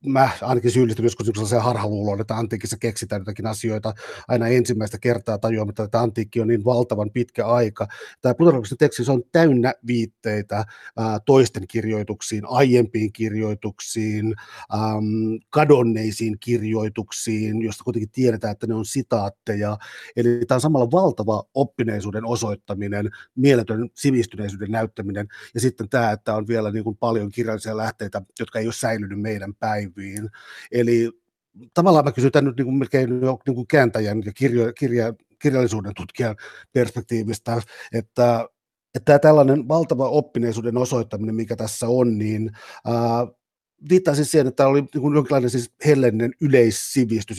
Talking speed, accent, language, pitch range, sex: 130 wpm, native, Finnish, 110-125 Hz, male